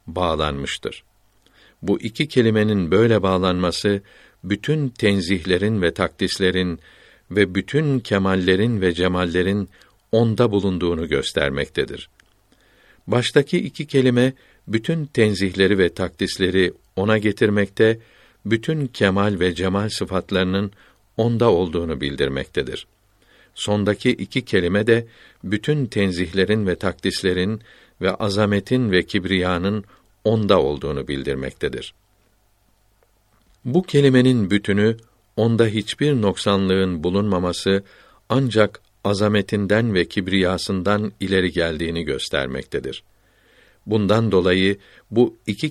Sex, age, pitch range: male, 60-79, 95-110 Hz